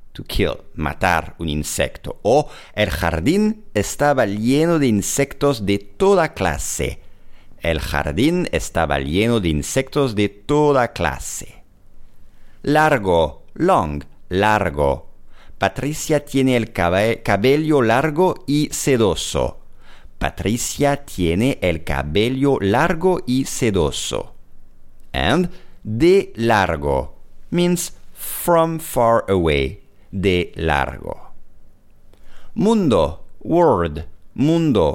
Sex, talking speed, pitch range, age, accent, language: male, 90 wpm, 85-135 Hz, 50-69, Italian, English